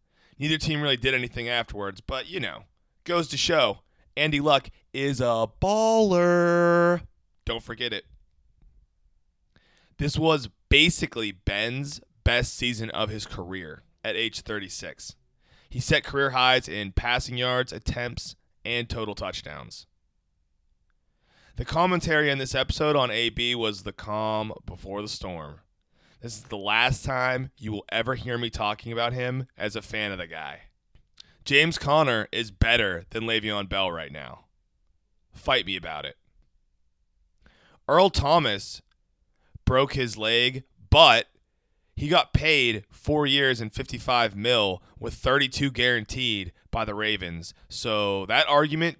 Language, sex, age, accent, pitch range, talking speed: English, male, 30-49, American, 95-130 Hz, 135 wpm